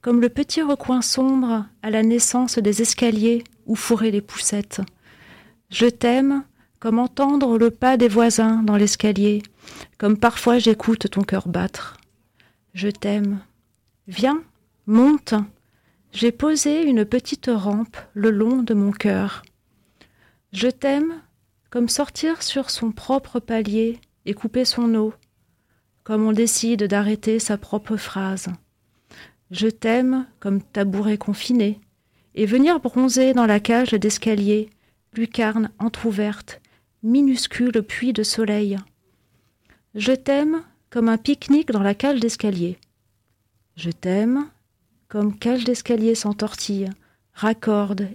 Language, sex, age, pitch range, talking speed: French, female, 40-59, 200-240 Hz, 120 wpm